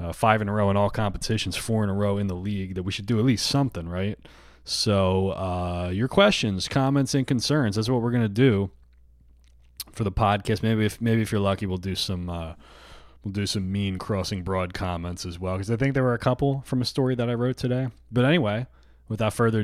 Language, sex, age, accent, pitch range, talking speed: English, male, 20-39, American, 95-115 Hz, 225 wpm